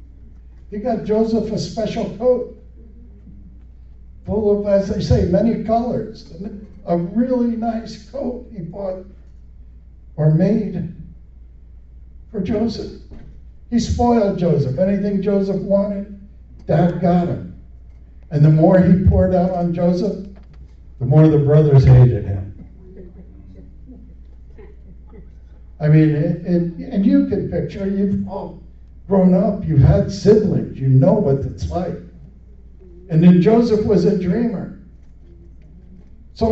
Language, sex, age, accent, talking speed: English, male, 60-79, American, 115 wpm